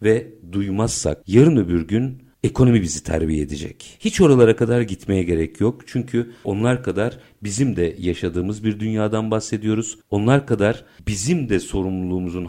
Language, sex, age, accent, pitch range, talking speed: Turkish, male, 50-69, native, 95-120 Hz, 140 wpm